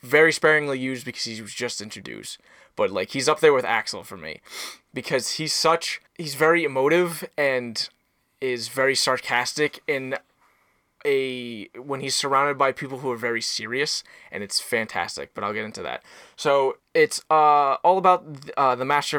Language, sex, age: English, male, 20-39